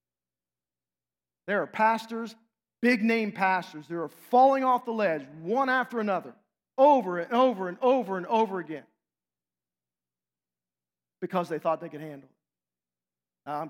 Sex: male